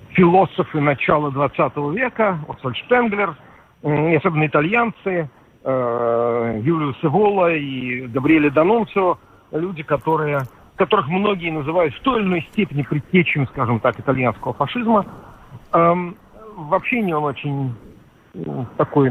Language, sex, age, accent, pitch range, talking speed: Russian, male, 50-69, native, 140-200 Hz, 100 wpm